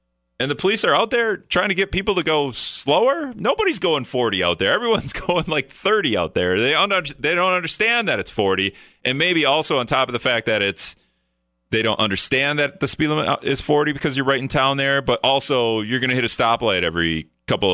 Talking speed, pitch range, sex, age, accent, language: 225 wpm, 80-125 Hz, male, 30-49, American, English